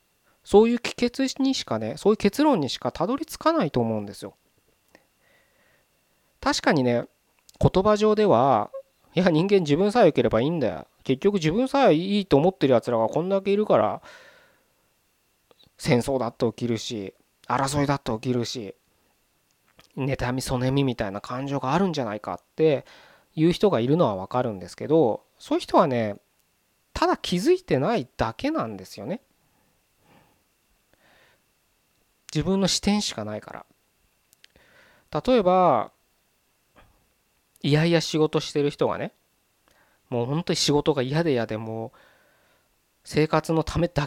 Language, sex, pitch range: Japanese, male, 125-210 Hz